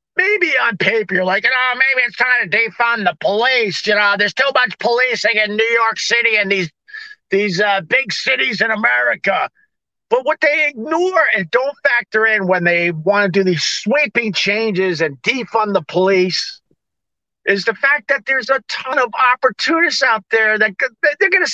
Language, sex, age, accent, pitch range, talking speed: English, male, 50-69, American, 195-275 Hz, 185 wpm